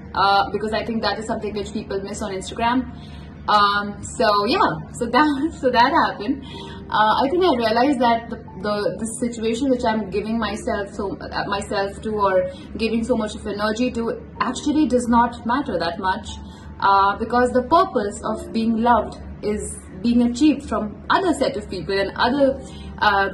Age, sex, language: 20-39, female, English